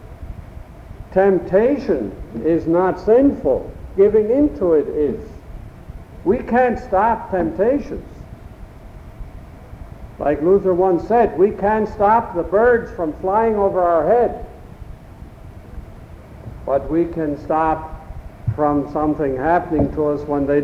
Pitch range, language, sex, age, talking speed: 145-225 Hz, English, male, 60-79, 110 wpm